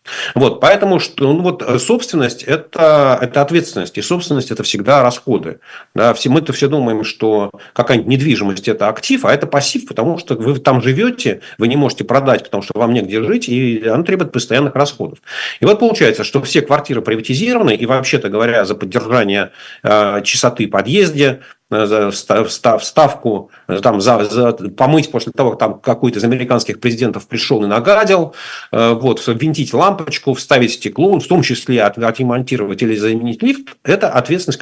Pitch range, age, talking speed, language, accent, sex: 115-150 Hz, 40-59, 155 wpm, Russian, native, male